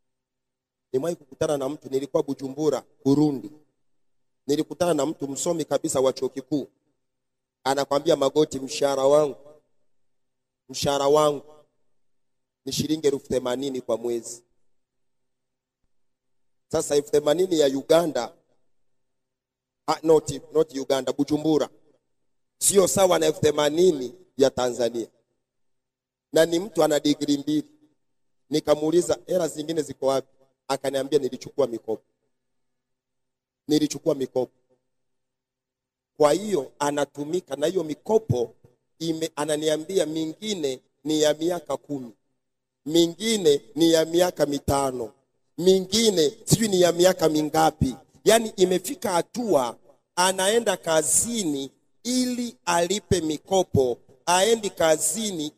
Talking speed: 95 wpm